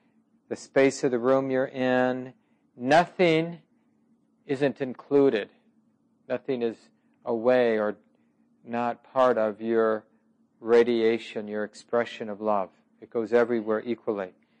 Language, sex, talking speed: English, male, 110 wpm